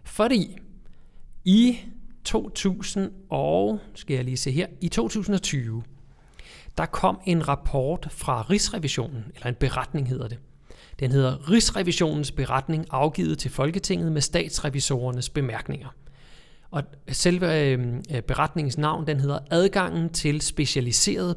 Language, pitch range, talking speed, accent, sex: Danish, 130-160 Hz, 120 wpm, native, male